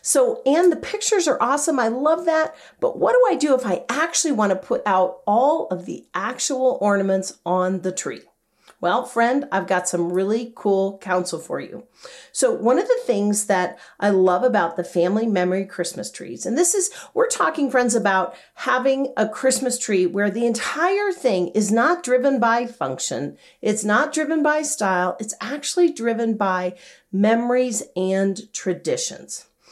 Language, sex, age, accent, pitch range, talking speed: English, female, 40-59, American, 195-285 Hz, 170 wpm